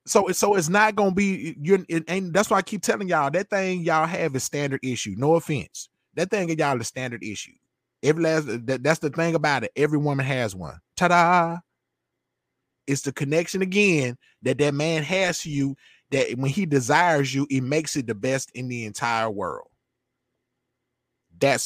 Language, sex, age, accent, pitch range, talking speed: English, male, 20-39, American, 135-175 Hz, 195 wpm